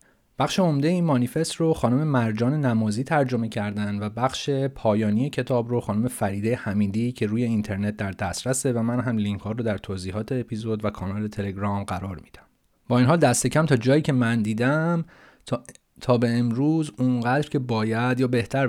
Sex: male